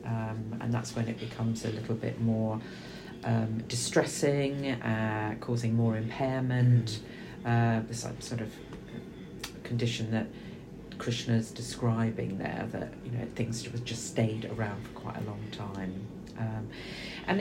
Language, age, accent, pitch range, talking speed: English, 40-59, British, 110-125 Hz, 135 wpm